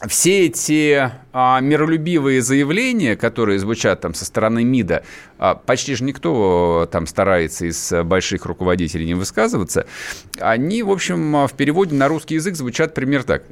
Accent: native